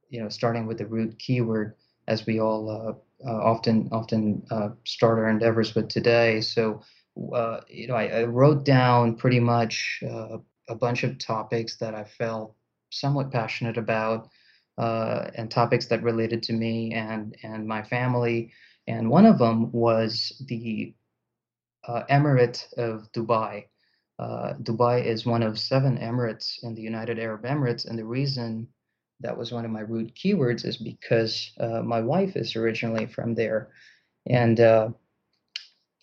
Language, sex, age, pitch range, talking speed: English, male, 20-39, 110-120 Hz, 160 wpm